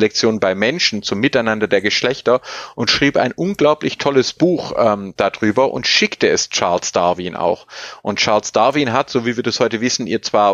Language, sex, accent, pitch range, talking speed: German, male, German, 110-135 Hz, 190 wpm